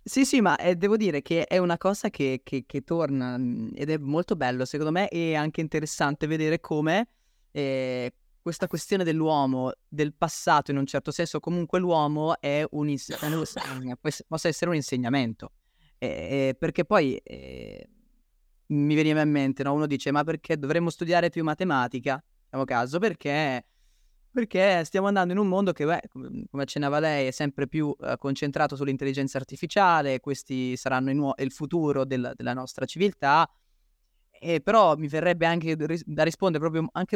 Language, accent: Italian, native